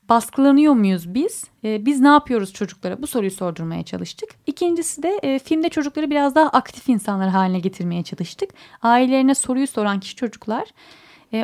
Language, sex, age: Turkish, female, 10-29